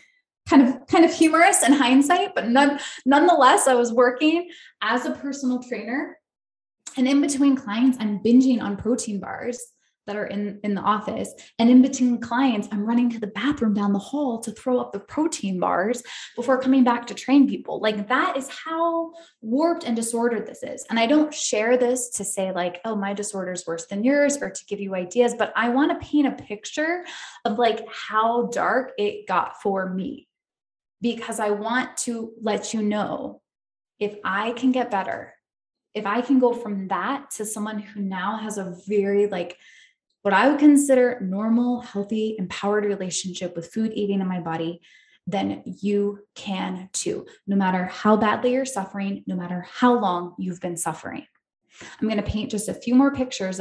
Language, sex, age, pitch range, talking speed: English, female, 20-39, 200-260 Hz, 185 wpm